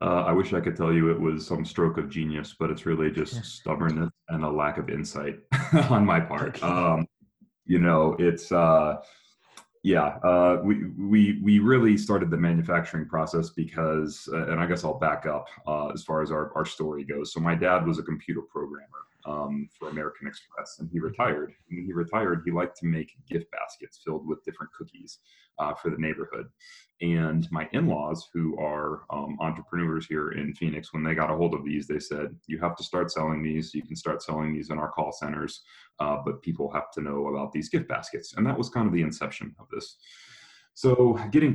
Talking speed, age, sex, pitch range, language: 205 wpm, 30-49, male, 75-90 Hz, English